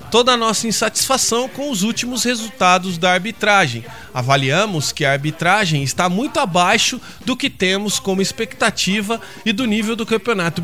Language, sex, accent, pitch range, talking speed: Portuguese, male, Brazilian, 175-235 Hz, 150 wpm